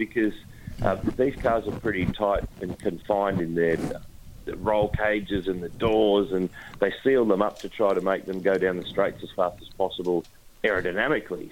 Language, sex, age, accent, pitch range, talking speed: English, male, 40-59, Australian, 95-115 Hz, 180 wpm